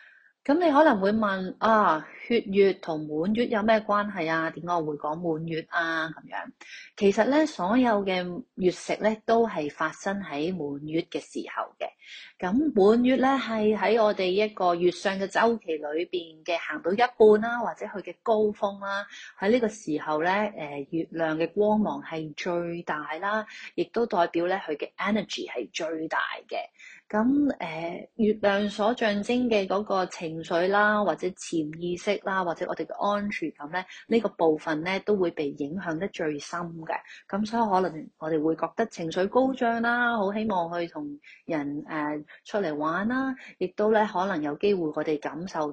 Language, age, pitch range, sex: Chinese, 30-49, 160-215 Hz, female